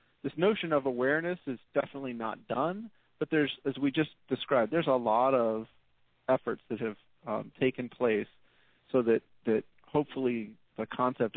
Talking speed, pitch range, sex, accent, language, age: 160 wpm, 115-140 Hz, male, American, English, 40-59